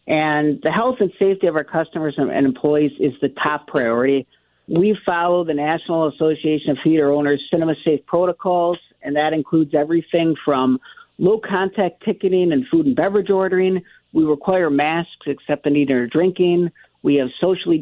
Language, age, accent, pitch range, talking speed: English, 50-69, American, 140-175 Hz, 165 wpm